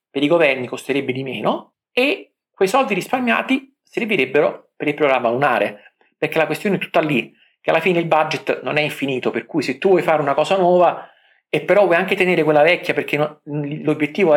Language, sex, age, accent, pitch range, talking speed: Italian, male, 50-69, native, 130-175 Hz, 195 wpm